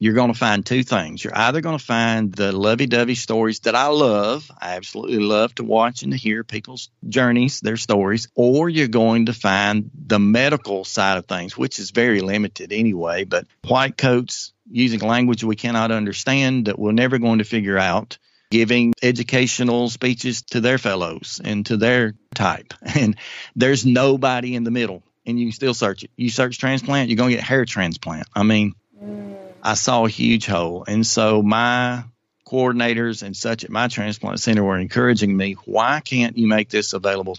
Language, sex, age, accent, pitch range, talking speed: English, male, 40-59, American, 105-120 Hz, 185 wpm